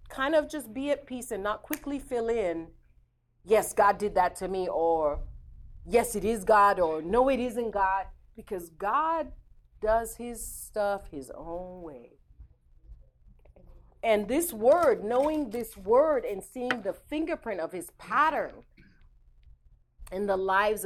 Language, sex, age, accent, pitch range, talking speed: English, female, 40-59, American, 160-235 Hz, 145 wpm